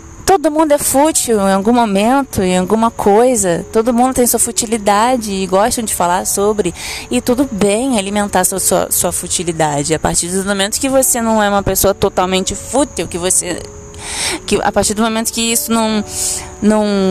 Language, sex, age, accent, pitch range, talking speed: Portuguese, female, 20-39, Brazilian, 170-220 Hz, 180 wpm